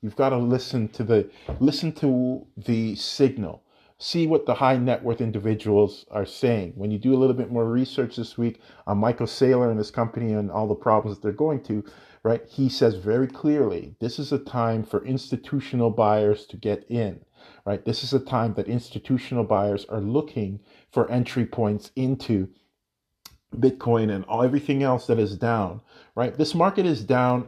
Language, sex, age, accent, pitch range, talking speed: English, male, 40-59, American, 110-135 Hz, 185 wpm